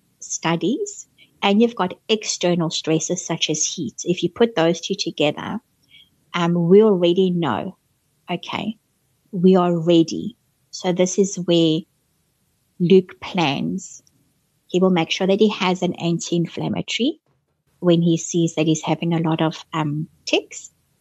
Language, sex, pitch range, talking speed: English, female, 160-190 Hz, 140 wpm